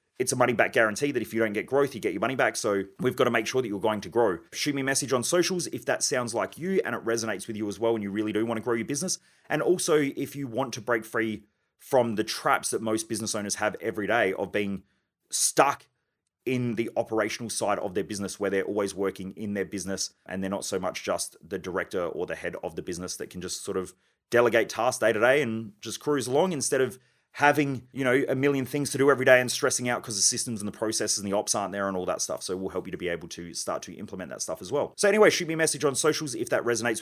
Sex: male